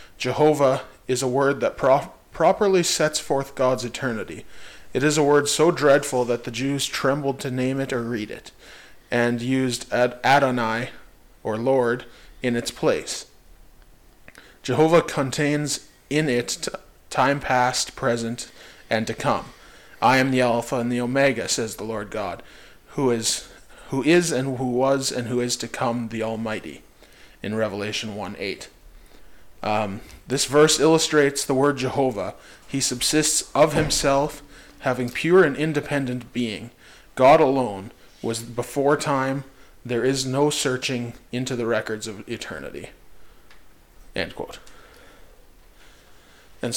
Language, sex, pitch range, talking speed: English, male, 115-140 Hz, 140 wpm